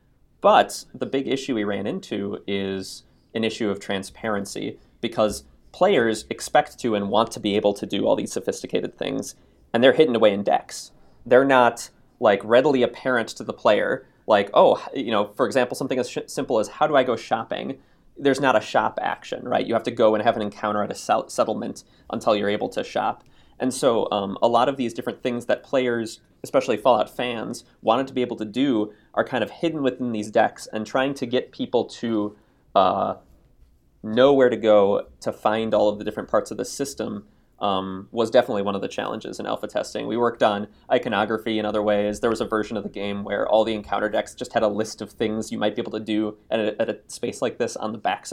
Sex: male